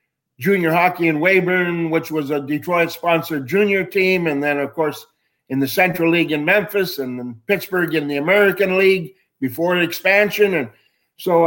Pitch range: 130-165 Hz